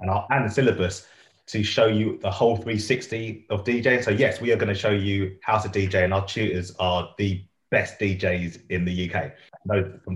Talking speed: 220 wpm